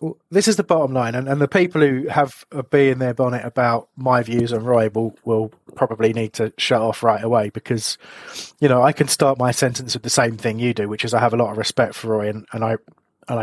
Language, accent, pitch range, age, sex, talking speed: English, British, 115-135 Hz, 30-49, male, 260 wpm